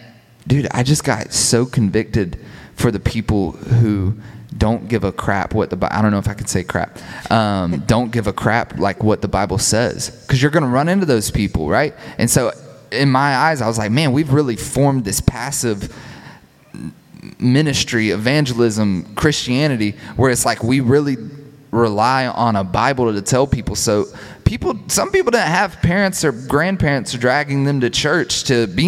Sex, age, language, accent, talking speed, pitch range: male, 20-39, English, American, 185 wpm, 105-135 Hz